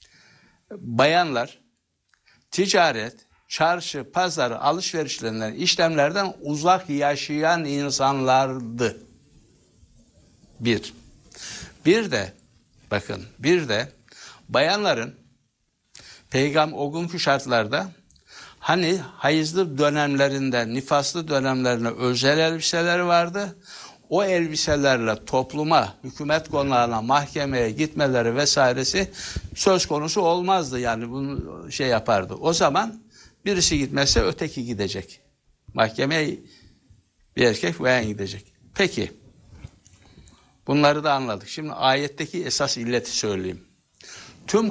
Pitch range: 120-160 Hz